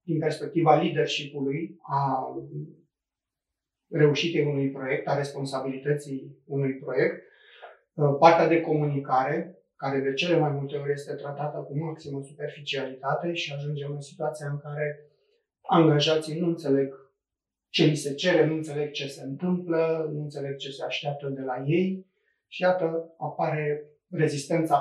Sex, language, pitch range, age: male, Romanian, 140-160 Hz, 30-49